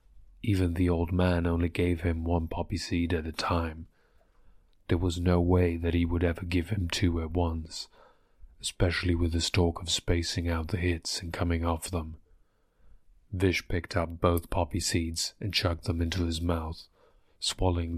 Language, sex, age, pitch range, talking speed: English, male, 30-49, 85-95 Hz, 175 wpm